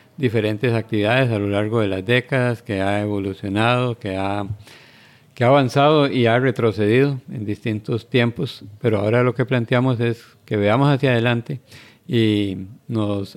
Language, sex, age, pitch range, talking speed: Spanish, male, 50-69, 110-130 Hz, 155 wpm